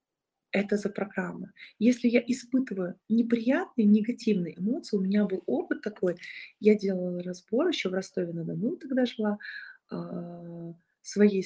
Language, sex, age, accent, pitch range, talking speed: Russian, female, 30-49, native, 185-225 Hz, 130 wpm